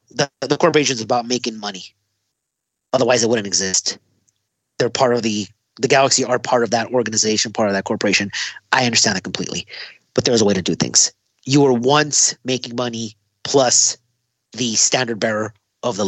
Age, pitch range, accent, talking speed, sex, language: 30-49, 115-135 Hz, American, 180 wpm, male, English